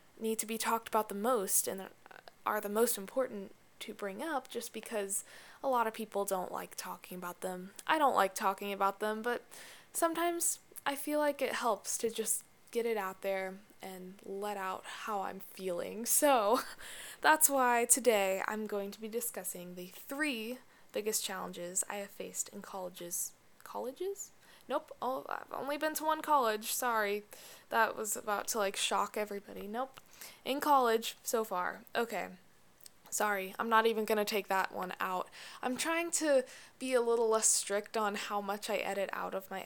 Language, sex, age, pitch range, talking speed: English, female, 10-29, 195-255 Hz, 175 wpm